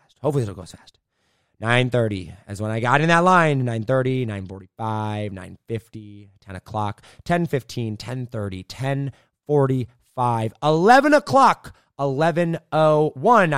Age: 30-49